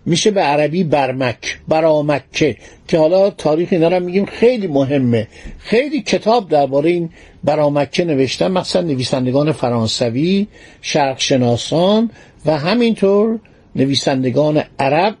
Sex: male